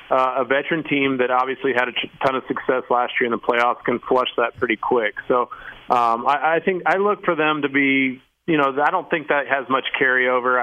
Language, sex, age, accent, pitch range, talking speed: English, male, 30-49, American, 120-135 Hz, 225 wpm